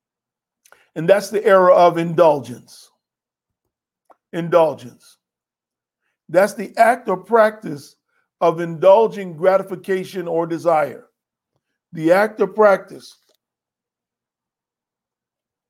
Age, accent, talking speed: 50-69, American, 80 wpm